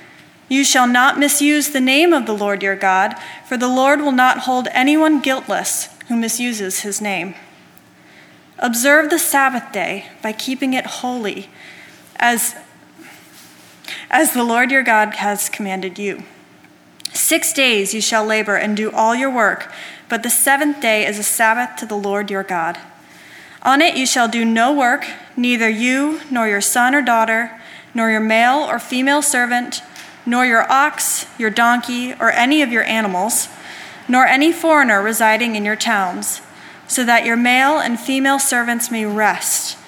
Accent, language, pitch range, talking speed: American, English, 215-265 Hz, 165 wpm